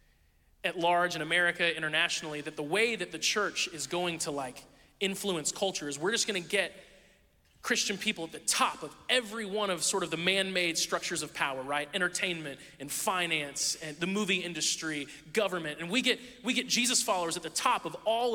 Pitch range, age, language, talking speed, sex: 165-235 Hz, 30-49, English, 195 wpm, male